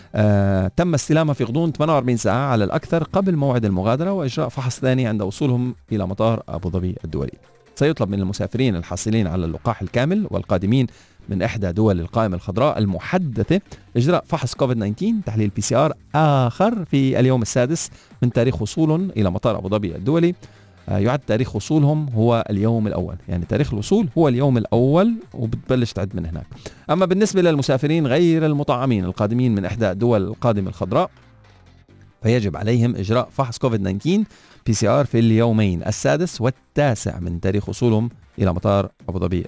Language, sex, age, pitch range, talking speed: Arabic, male, 40-59, 100-135 Hz, 145 wpm